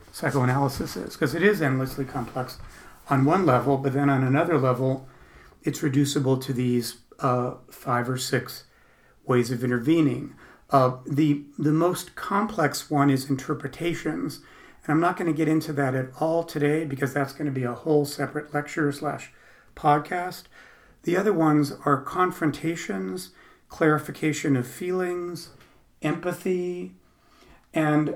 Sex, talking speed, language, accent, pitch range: male, 140 wpm, English, American, 125-150 Hz